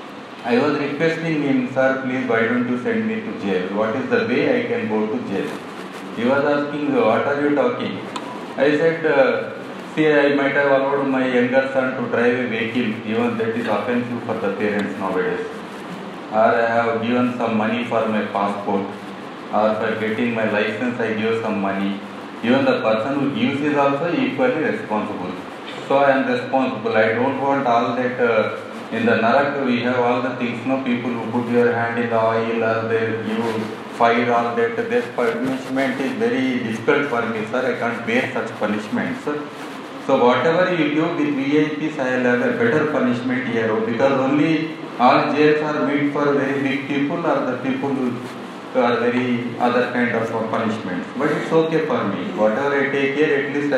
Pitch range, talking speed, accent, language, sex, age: 115-150 Hz, 190 wpm, Indian, English, male, 40-59